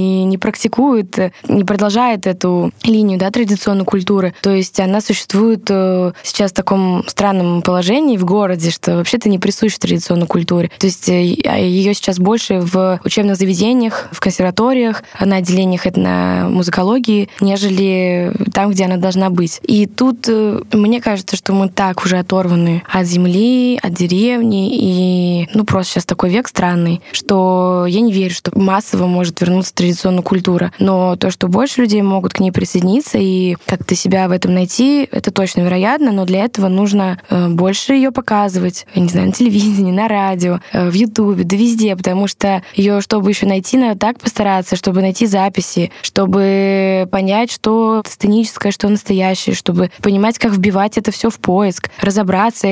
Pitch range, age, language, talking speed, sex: 185-210 Hz, 10-29, Russian, 160 wpm, female